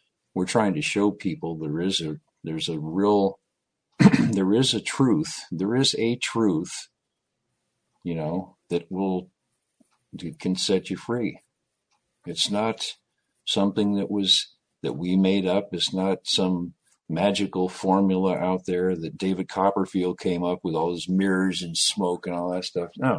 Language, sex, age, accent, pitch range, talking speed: English, male, 50-69, American, 85-105 Hz, 155 wpm